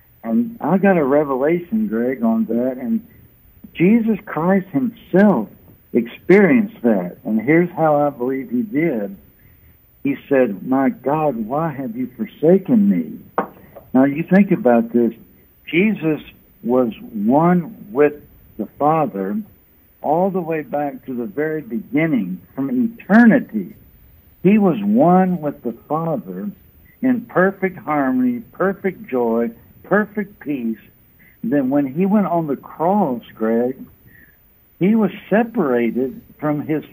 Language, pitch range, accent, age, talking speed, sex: English, 135-215 Hz, American, 60-79, 125 wpm, male